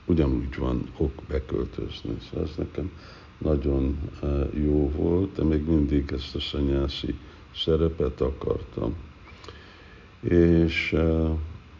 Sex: male